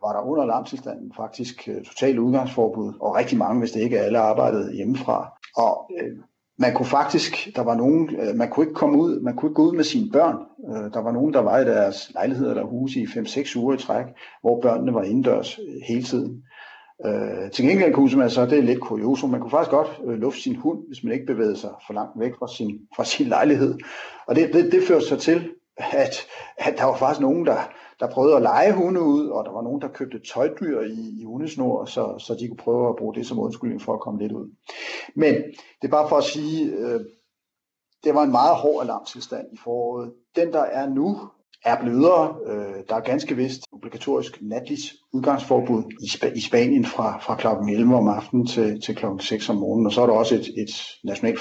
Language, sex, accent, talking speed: Danish, male, native, 225 wpm